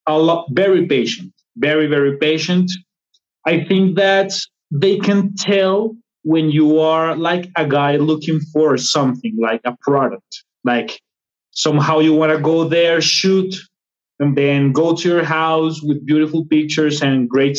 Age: 30-49